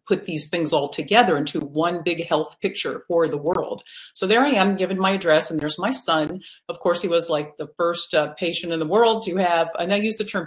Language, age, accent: English, 50-69, American